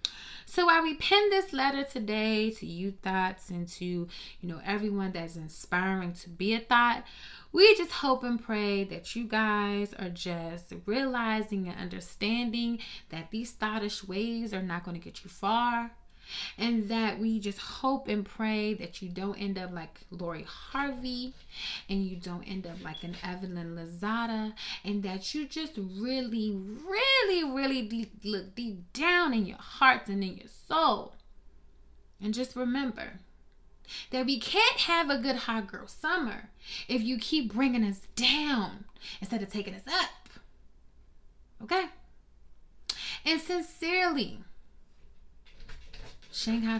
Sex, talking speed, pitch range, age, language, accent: female, 145 wpm, 185-265 Hz, 20-39, English, American